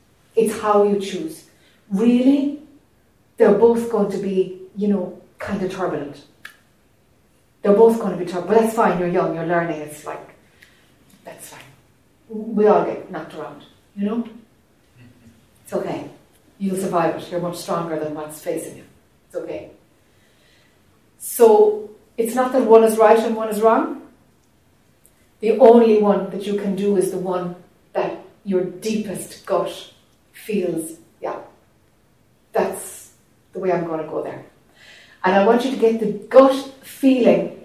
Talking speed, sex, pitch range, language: 155 wpm, female, 180-235 Hz, English